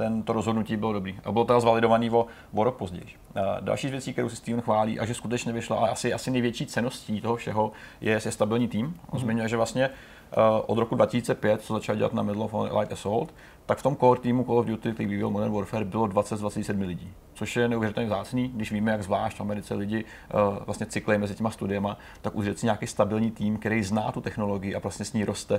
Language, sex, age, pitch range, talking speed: Czech, male, 30-49, 105-115 Hz, 225 wpm